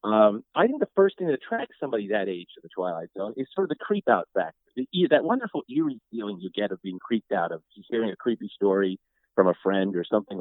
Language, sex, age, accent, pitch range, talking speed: English, male, 50-69, American, 100-165 Hz, 235 wpm